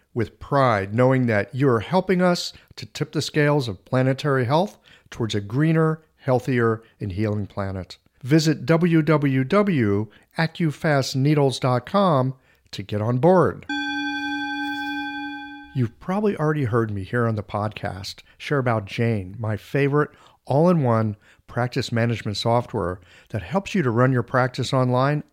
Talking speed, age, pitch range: 125 wpm, 50-69, 110-150 Hz